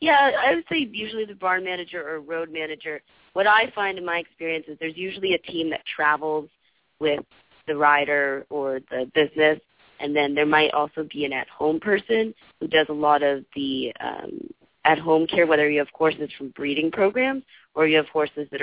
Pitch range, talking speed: 145-170 Hz, 195 wpm